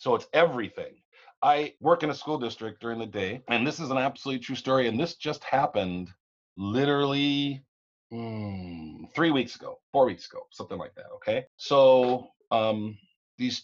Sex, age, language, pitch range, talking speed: male, 40-59, English, 100-140 Hz, 165 wpm